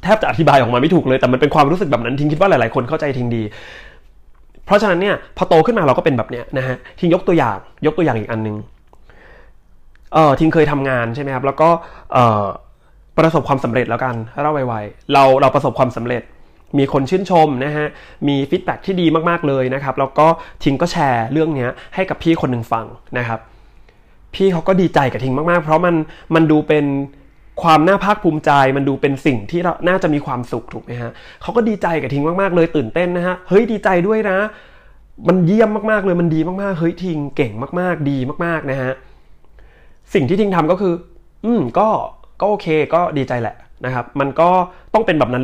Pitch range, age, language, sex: 130-175 Hz, 20-39, Thai, male